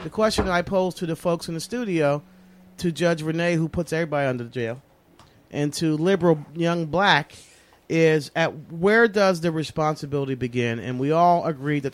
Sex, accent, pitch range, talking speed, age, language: male, American, 130-165 Hz, 180 wpm, 40-59, English